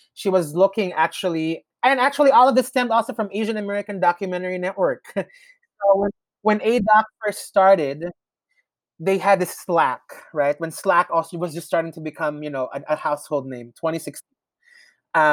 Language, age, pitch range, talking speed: English, 30-49, 150-195 Hz, 165 wpm